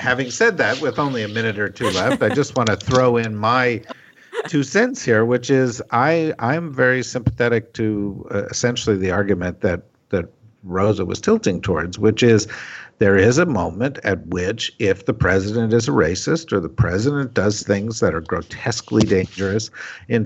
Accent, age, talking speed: American, 50-69, 180 wpm